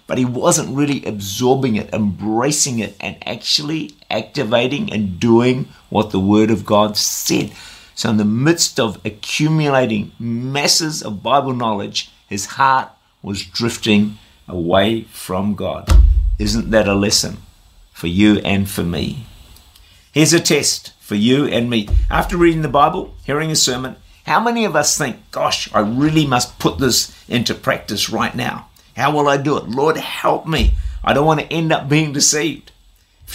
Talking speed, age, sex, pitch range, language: 165 wpm, 50-69, male, 100-150 Hz, English